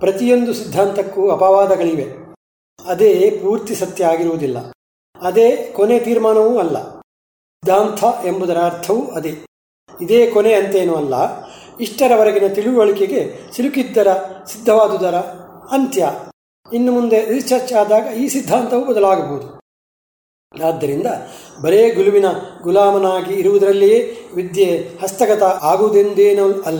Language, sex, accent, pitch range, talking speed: Kannada, male, native, 175-235 Hz, 85 wpm